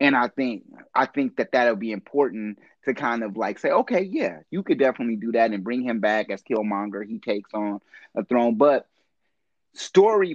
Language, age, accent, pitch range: English, 30-49, American, 110-135 Hz